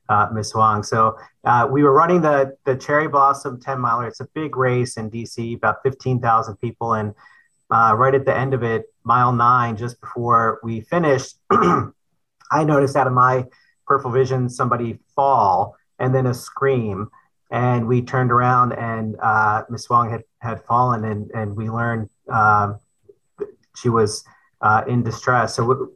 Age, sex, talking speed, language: 40-59, male, 165 wpm, English